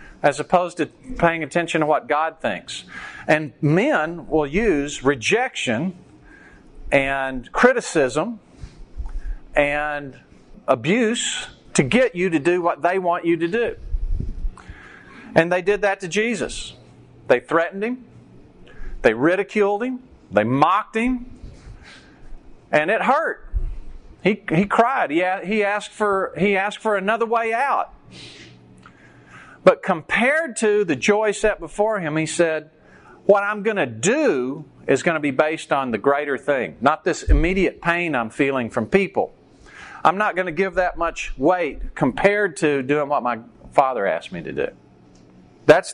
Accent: American